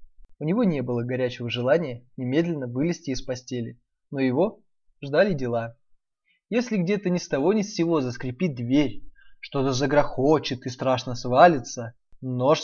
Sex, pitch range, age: male, 125-160 Hz, 20-39